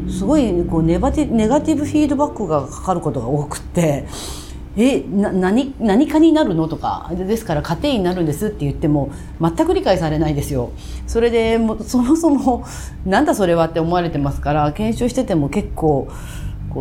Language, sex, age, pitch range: Japanese, female, 40-59, 150-240 Hz